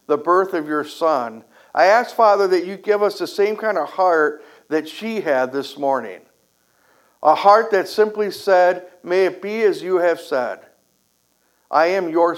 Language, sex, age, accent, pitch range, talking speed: English, male, 60-79, American, 165-220 Hz, 180 wpm